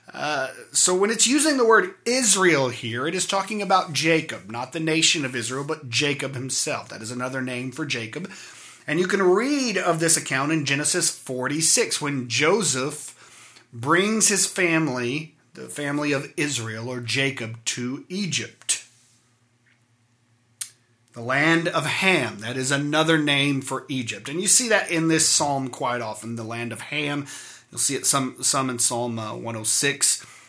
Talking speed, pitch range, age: 160 wpm, 120-160 Hz, 30-49